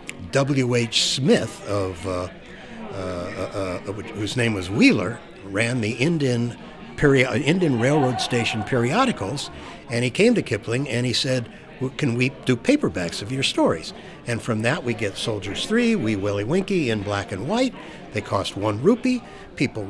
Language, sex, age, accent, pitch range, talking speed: English, male, 60-79, American, 115-185 Hz, 170 wpm